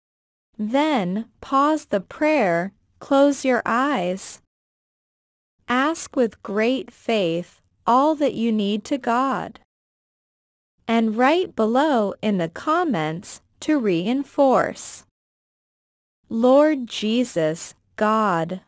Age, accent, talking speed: 20-39, American, 90 wpm